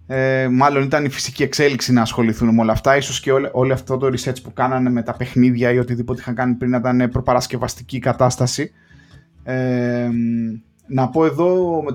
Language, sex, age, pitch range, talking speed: Greek, male, 20-39, 115-130 Hz, 175 wpm